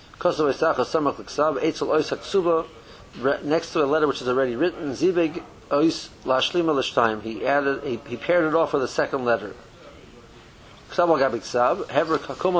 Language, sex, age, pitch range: English, male, 50-69, 125-165 Hz